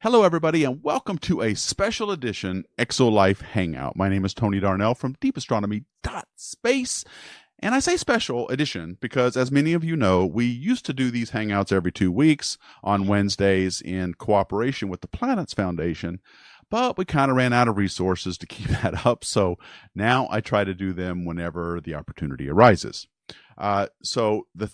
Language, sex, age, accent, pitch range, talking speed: English, male, 40-59, American, 95-135 Hz, 170 wpm